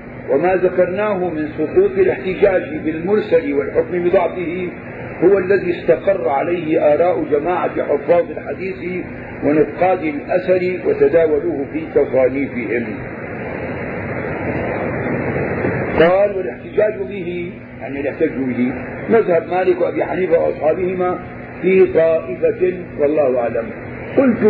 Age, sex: 50-69, male